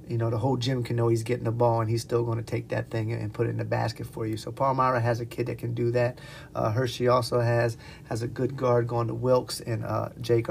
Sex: male